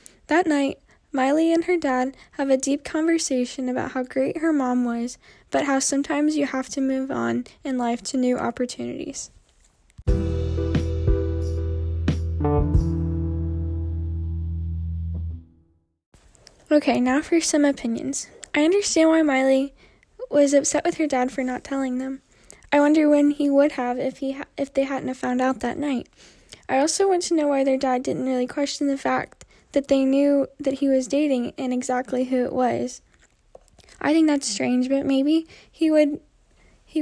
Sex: female